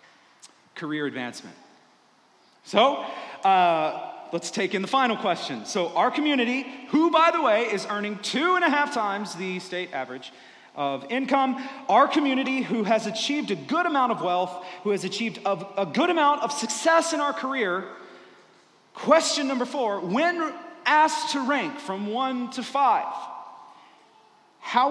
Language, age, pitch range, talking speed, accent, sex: English, 40-59, 195-300 Hz, 150 wpm, American, male